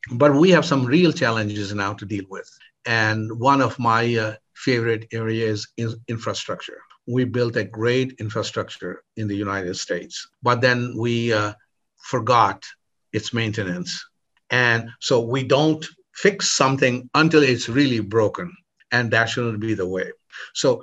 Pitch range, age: 115-155 Hz, 50-69